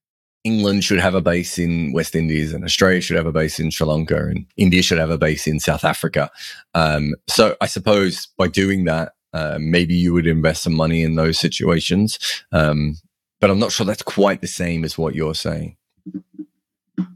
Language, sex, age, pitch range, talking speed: English, male, 30-49, 80-105 Hz, 195 wpm